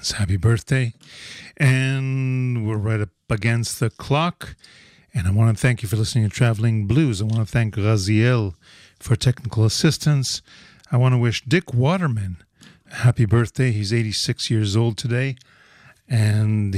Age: 40-59